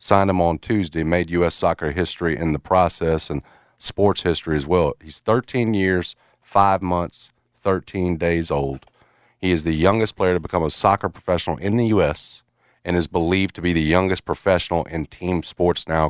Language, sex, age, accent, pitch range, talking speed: English, male, 40-59, American, 80-100 Hz, 185 wpm